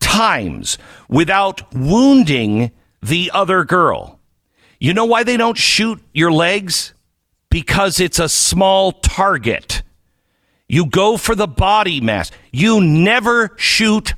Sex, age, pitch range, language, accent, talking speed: male, 50-69, 110-180 Hz, English, American, 120 wpm